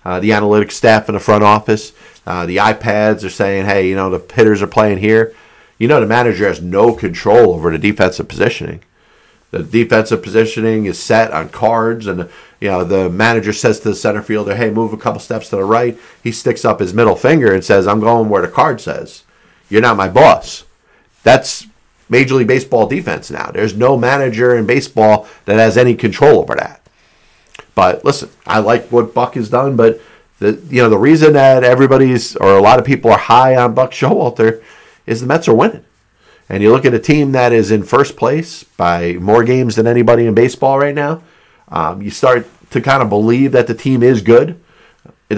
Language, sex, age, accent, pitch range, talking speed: English, male, 50-69, American, 105-120 Hz, 205 wpm